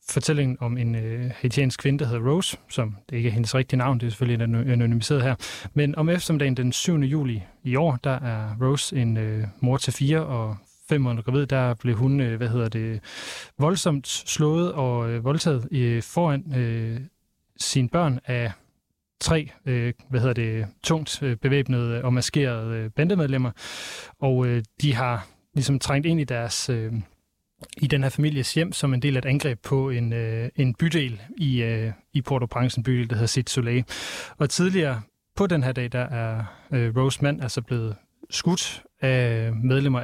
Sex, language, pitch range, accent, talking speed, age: male, Danish, 115-140 Hz, native, 185 wpm, 30-49